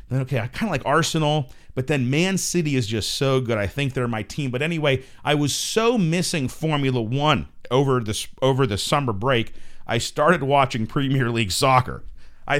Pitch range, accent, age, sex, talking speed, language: 115-165 Hz, American, 40-59, male, 190 wpm, English